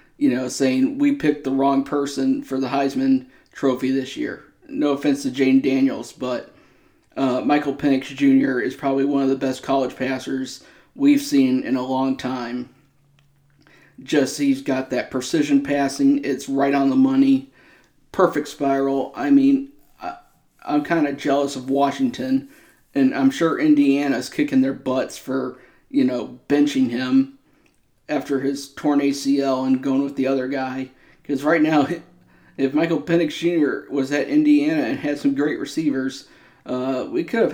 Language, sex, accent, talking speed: English, male, American, 160 wpm